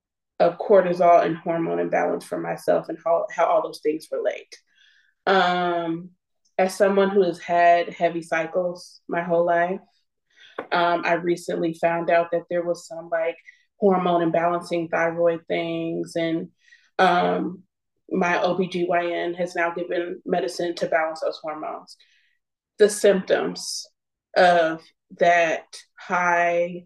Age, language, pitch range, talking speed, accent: 20-39, English, 175-210 Hz, 125 wpm, American